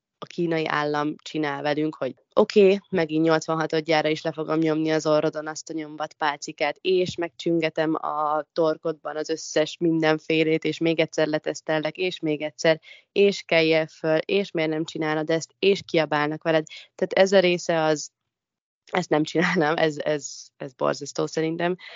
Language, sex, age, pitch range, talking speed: Hungarian, female, 20-39, 155-180 Hz, 155 wpm